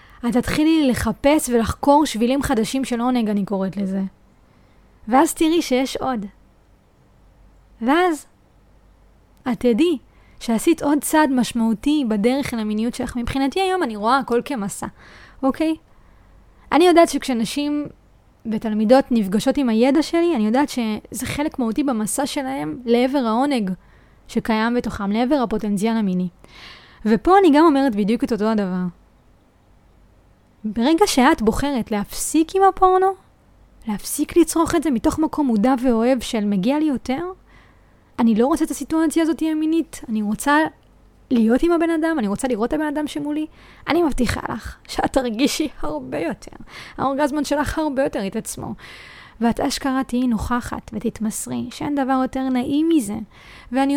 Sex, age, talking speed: female, 20-39, 125 wpm